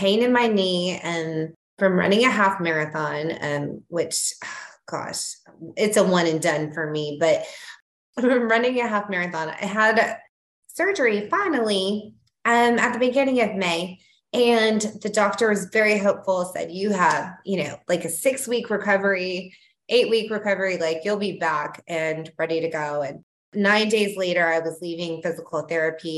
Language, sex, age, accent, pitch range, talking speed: English, female, 20-39, American, 165-215 Hz, 165 wpm